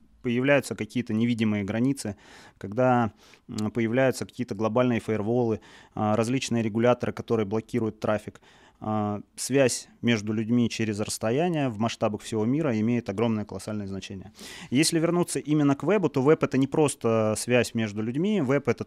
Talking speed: 140 wpm